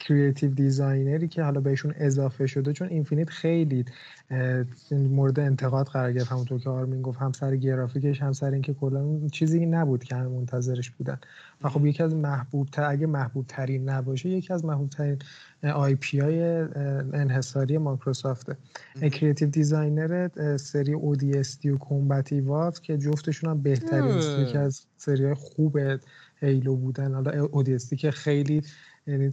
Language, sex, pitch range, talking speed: Persian, male, 135-150 Hz, 145 wpm